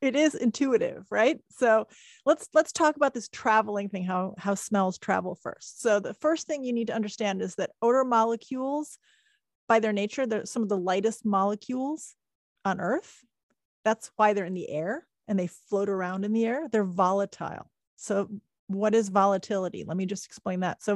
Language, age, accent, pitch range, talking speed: English, 30-49, American, 195-235 Hz, 185 wpm